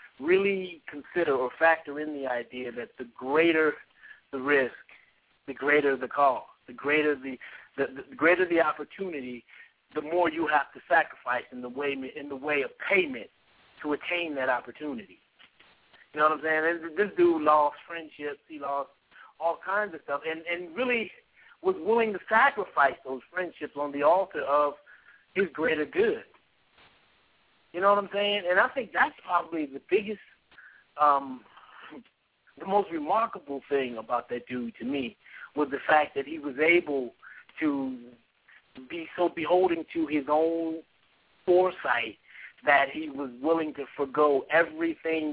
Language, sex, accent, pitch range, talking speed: English, male, American, 140-175 Hz, 155 wpm